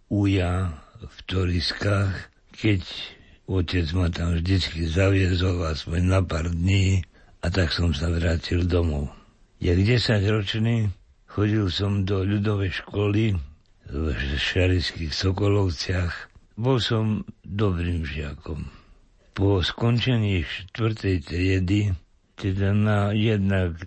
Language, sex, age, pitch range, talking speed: Slovak, male, 60-79, 85-100 Hz, 100 wpm